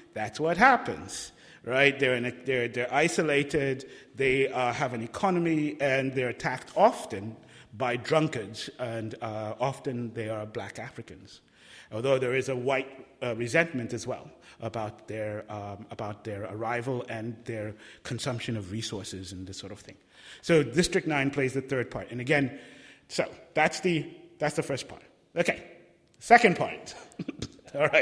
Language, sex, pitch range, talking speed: English, male, 120-170 Hz, 155 wpm